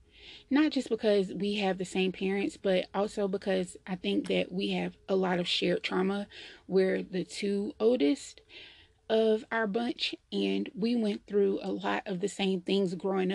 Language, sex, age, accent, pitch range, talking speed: English, female, 20-39, American, 180-205 Hz, 175 wpm